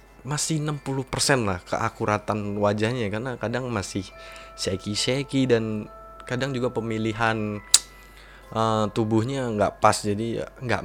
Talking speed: 110 wpm